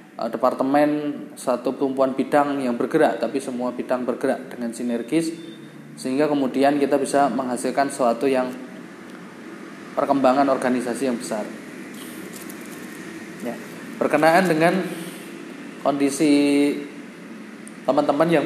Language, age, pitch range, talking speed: Indonesian, 20-39, 125-145 Hz, 95 wpm